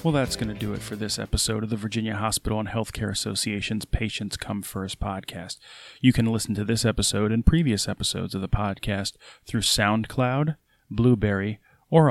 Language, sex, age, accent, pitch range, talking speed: English, male, 30-49, American, 100-115 Hz, 180 wpm